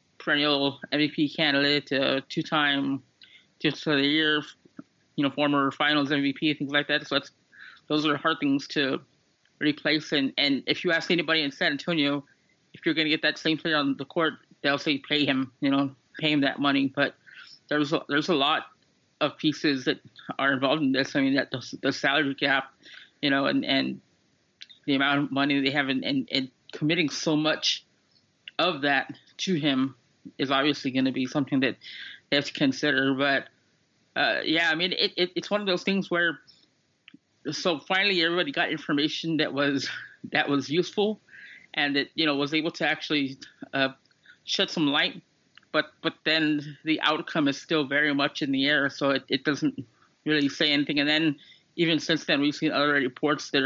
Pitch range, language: 140-155 Hz, English